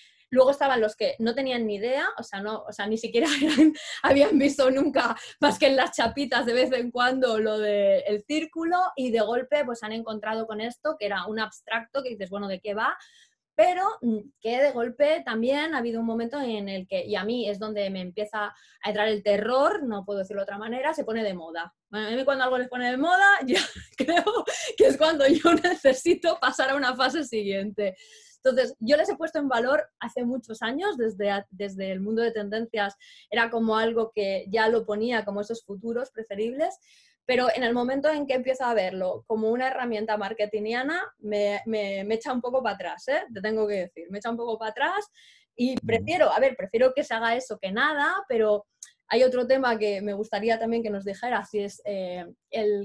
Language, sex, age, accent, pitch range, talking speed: Spanish, female, 20-39, Spanish, 210-275 Hz, 210 wpm